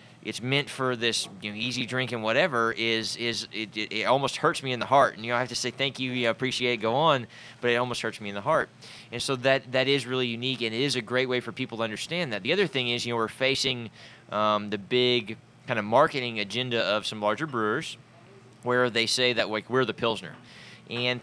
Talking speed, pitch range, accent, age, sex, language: 255 wpm, 115-130 Hz, American, 20-39, male, English